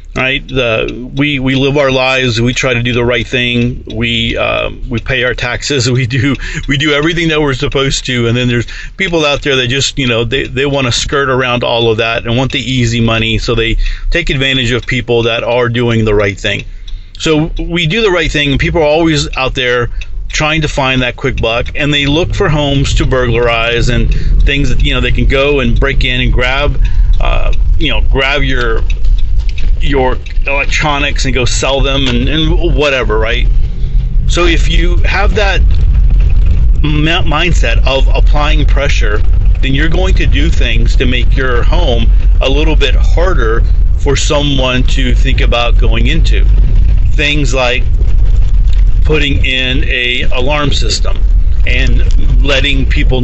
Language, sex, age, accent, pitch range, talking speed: English, male, 40-59, American, 100-135 Hz, 175 wpm